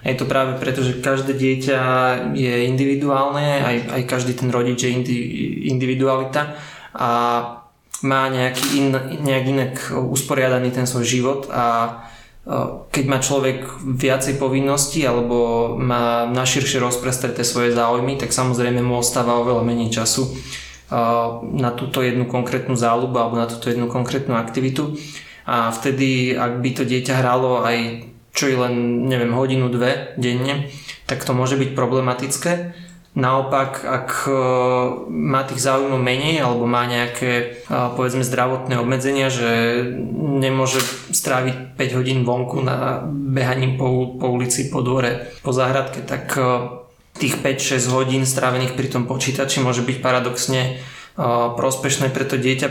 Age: 20-39